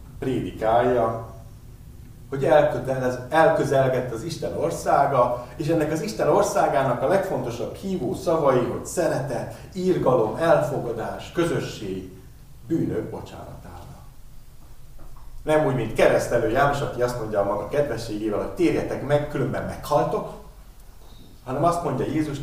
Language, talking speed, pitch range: Hungarian, 110 wpm, 100-145 Hz